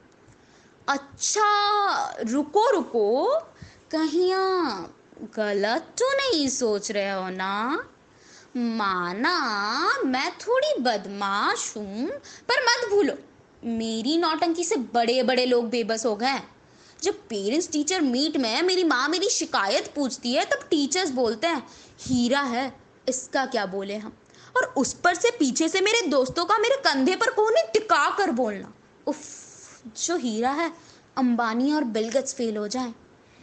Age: 20-39